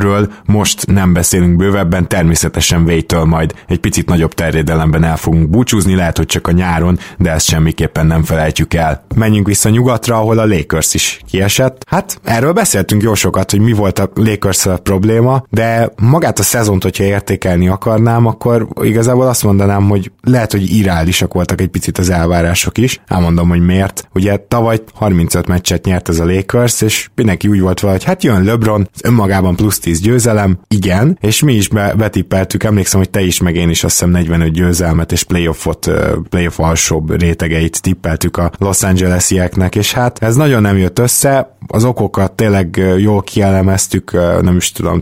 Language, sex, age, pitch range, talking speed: Hungarian, male, 20-39, 85-105 Hz, 175 wpm